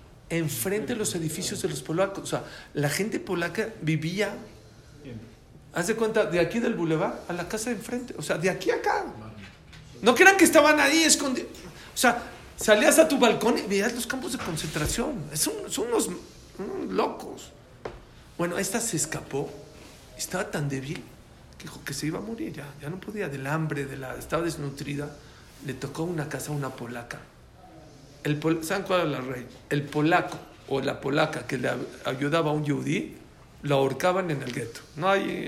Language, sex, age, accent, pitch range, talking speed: English, male, 50-69, Mexican, 140-180 Hz, 185 wpm